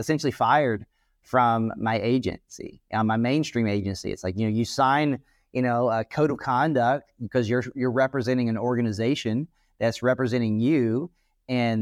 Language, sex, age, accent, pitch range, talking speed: English, male, 30-49, American, 115-135 Hz, 150 wpm